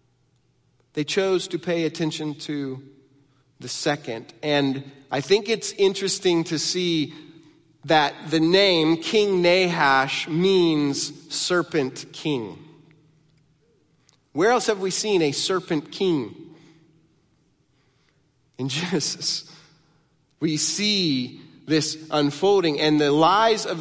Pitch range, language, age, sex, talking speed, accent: 140-170 Hz, English, 30-49, male, 105 wpm, American